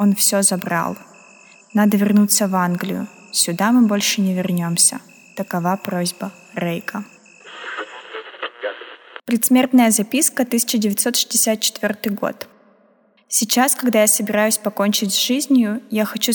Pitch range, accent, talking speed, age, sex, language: 195-230 Hz, native, 105 wpm, 20-39, female, Russian